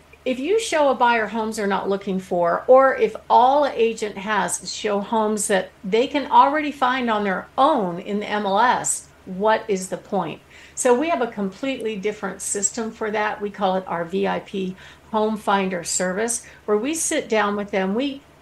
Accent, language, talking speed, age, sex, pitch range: American, English, 185 wpm, 50-69, female, 200-245 Hz